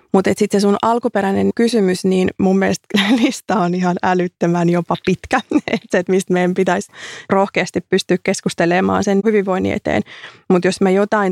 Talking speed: 155 wpm